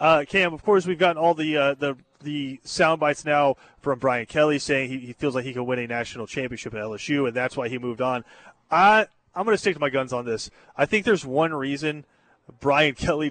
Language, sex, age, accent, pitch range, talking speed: English, male, 30-49, American, 130-155 Hz, 240 wpm